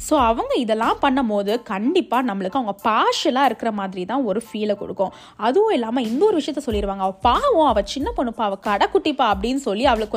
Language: Tamil